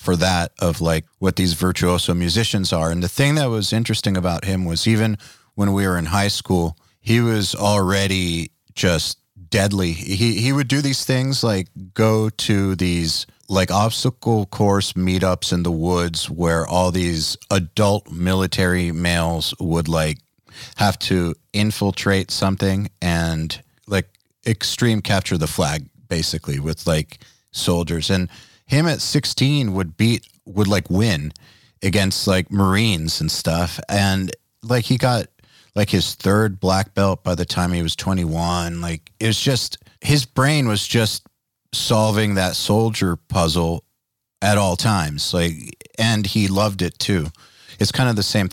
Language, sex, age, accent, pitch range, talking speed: English, male, 30-49, American, 90-110 Hz, 155 wpm